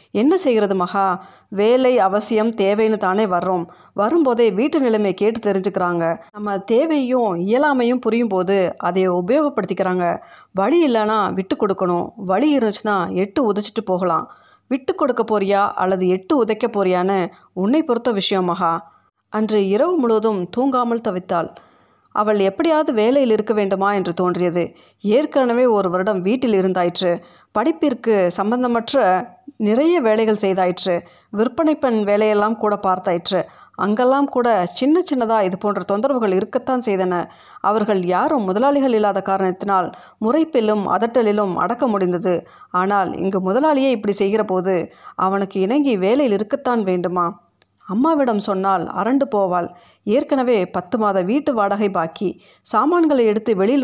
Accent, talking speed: native, 120 wpm